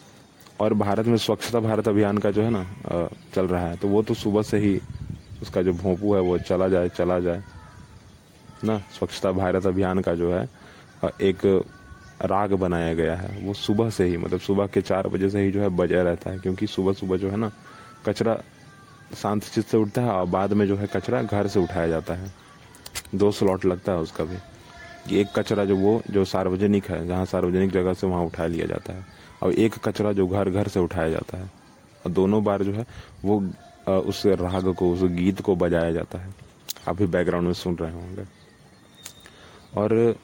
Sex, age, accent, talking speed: male, 20-39, native, 195 wpm